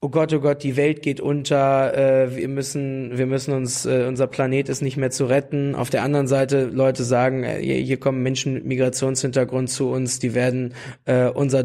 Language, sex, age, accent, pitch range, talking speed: German, male, 20-39, German, 135-160 Hz, 185 wpm